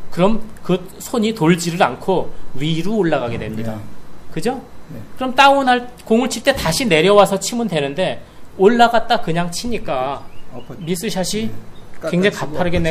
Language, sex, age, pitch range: Korean, male, 30-49, 145-215 Hz